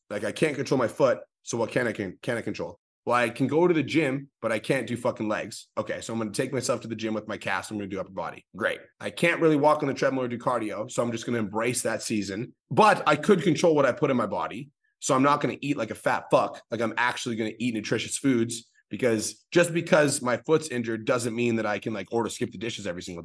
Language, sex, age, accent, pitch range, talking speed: English, male, 30-49, American, 115-140 Hz, 285 wpm